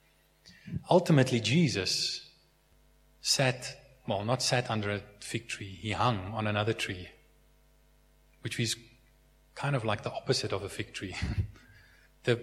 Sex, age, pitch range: male, 20-39, 105-135 Hz